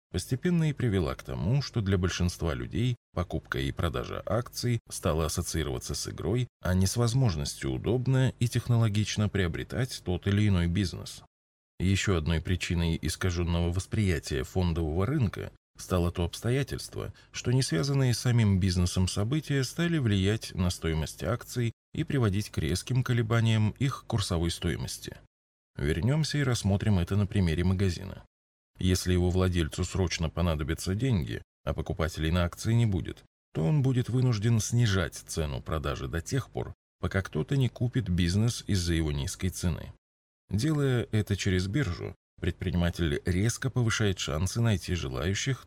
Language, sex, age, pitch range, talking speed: Russian, male, 20-39, 85-115 Hz, 140 wpm